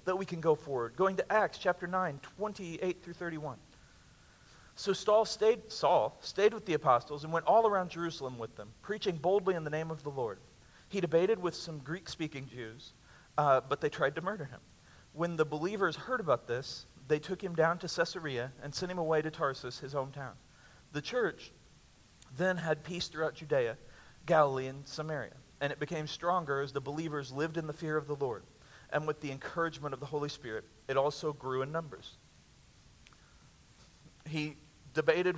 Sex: male